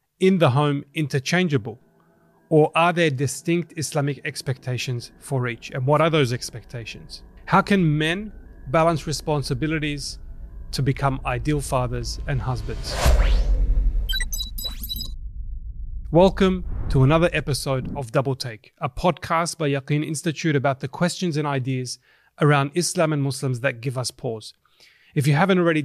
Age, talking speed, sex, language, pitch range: 30-49, 130 wpm, male, English, 130-160 Hz